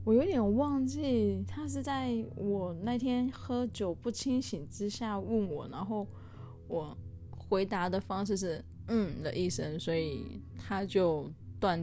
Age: 10-29